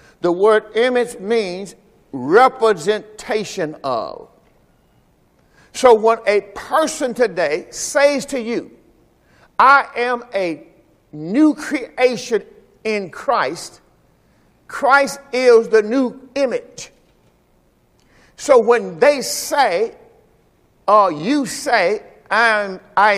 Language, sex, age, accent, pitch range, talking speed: English, male, 50-69, American, 195-265 Hz, 90 wpm